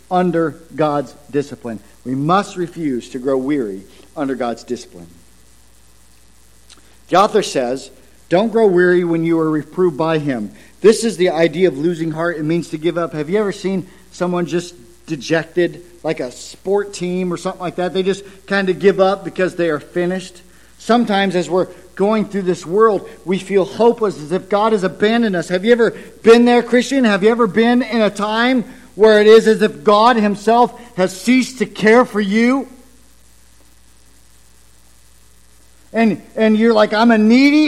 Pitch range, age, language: 165-240 Hz, 50-69, English